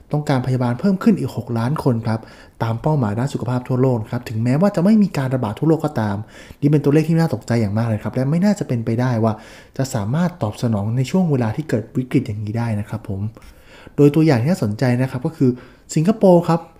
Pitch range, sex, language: 120-155 Hz, male, English